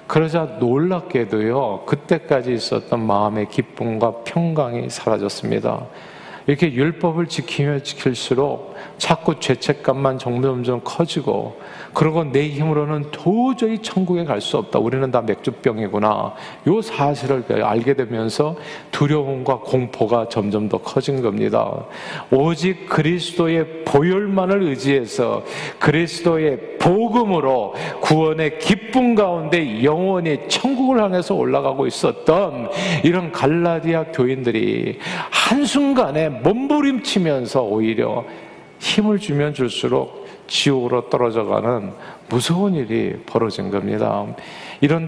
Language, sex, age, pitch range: Korean, male, 40-59, 125-175 Hz